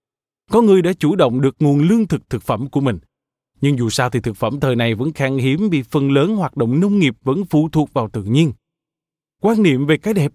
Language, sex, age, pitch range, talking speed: Vietnamese, male, 20-39, 120-160 Hz, 245 wpm